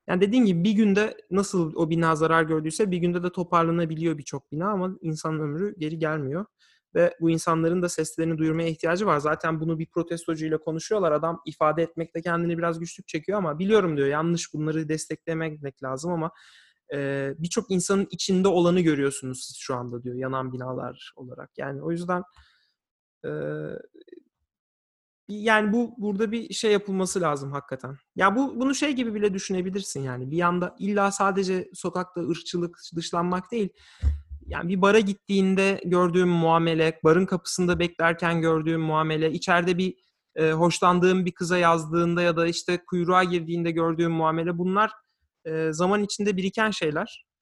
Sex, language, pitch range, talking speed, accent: male, Turkish, 160-190 Hz, 155 wpm, native